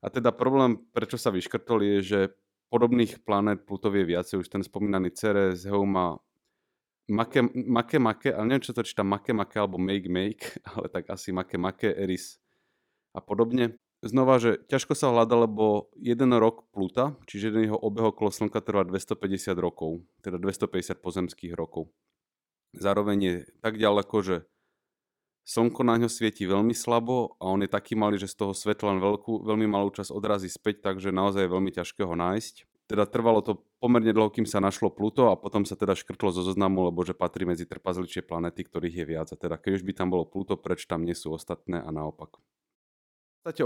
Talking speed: 180 wpm